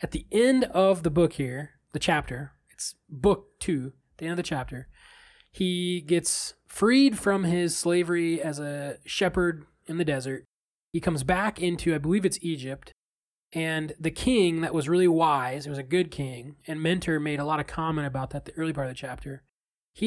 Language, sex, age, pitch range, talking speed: English, male, 20-39, 150-195 Hz, 195 wpm